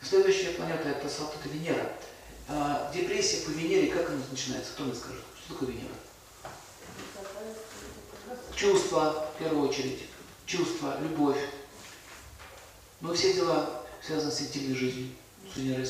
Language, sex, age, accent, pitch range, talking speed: Russian, male, 40-59, native, 125-160 Hz, 130 wpm